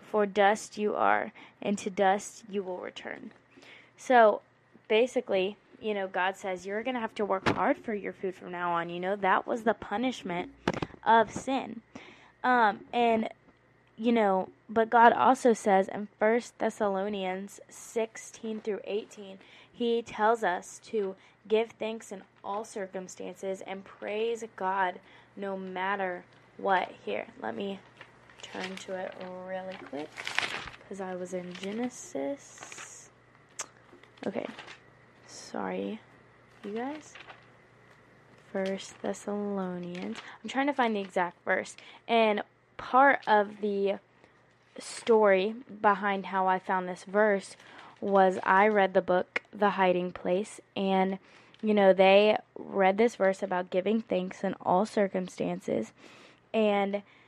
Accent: American